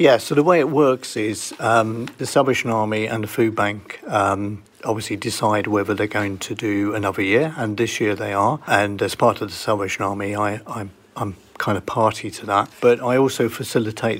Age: 50-69